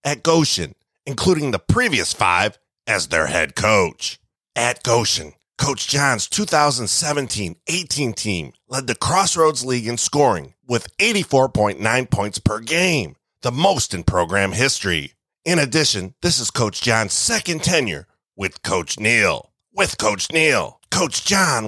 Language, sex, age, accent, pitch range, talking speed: English, male, 30-49, American, 90-135 Hz, 135 wpm